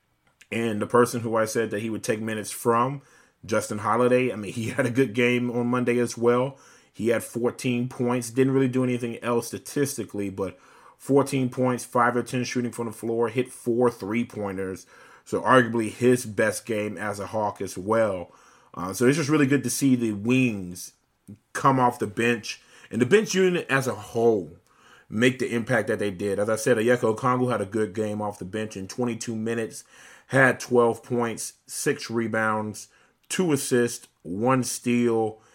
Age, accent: 30-49, American